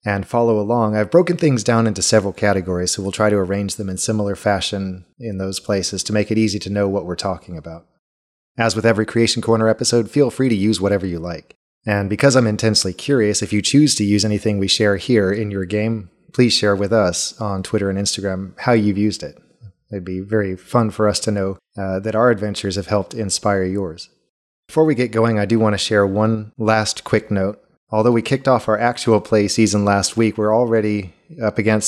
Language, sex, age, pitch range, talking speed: English, male, 30-49, 100-110 Hz, 220 wpm